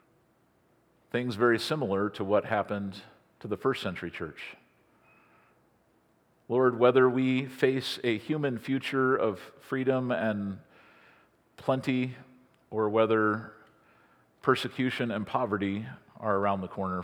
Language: English